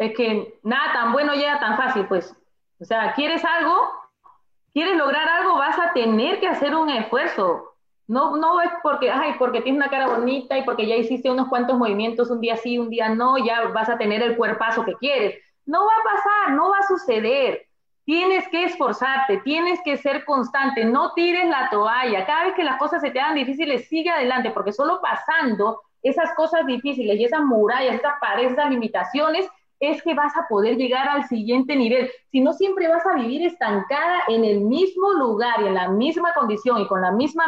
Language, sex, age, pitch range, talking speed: Spanish, female, 30-49, 230-310 Hz, 200 wpm